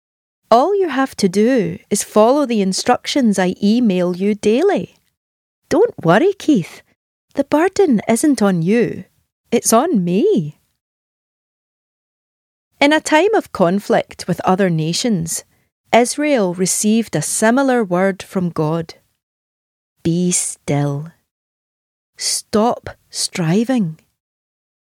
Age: 30-49